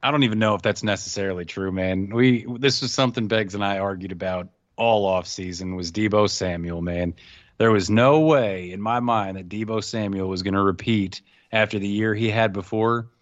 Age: 30-49